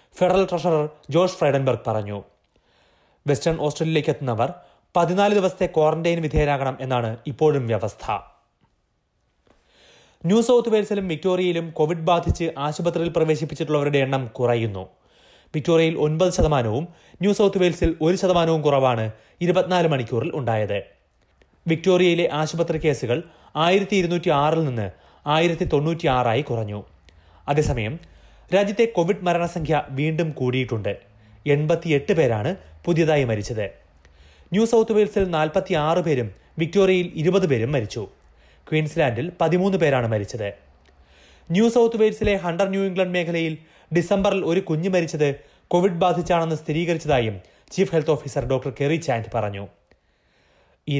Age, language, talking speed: 30-49, Malayalam, 110 wpm